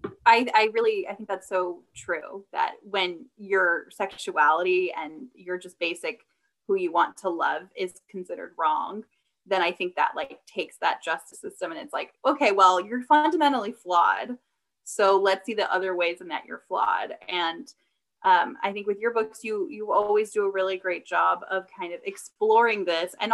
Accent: American